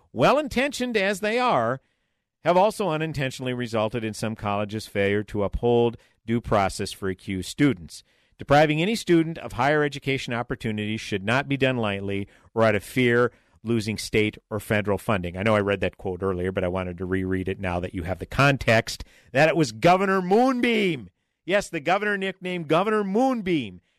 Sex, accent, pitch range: male, American, 105-150 Hz